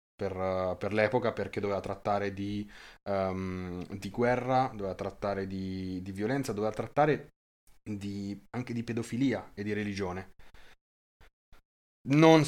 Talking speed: 125 wpm